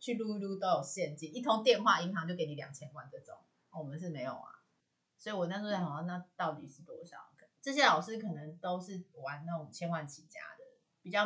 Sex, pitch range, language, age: female, 160-215 Hz, Chinese, 30-49